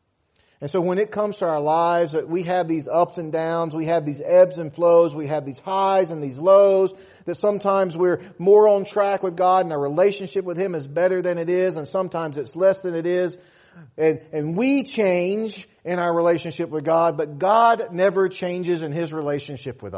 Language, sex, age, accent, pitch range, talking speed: English, male, 40-59, American, 130-190 Hz, 210 wpm